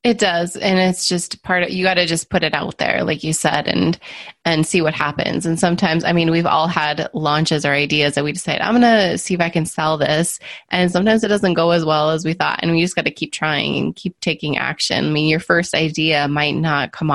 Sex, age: female, 20-39